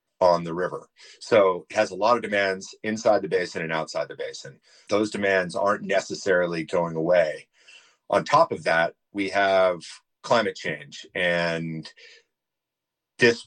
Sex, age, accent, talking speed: male, 40-59, American, 145 wpm